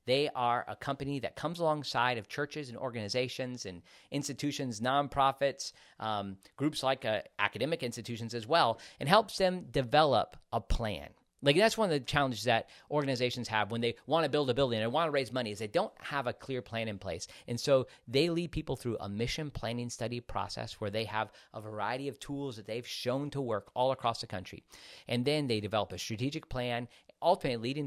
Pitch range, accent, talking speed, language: 110-140 Hz, American, 200 wpm, English